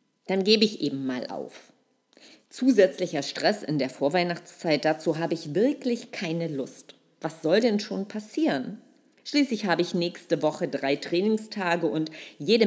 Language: German